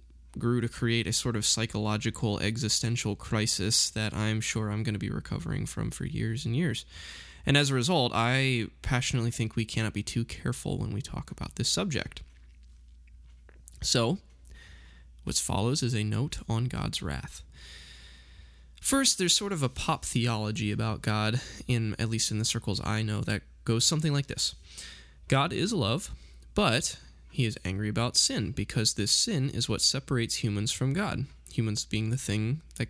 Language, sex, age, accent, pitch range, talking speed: English, male, 20-39, American, 100-130 Hz, 170 wpm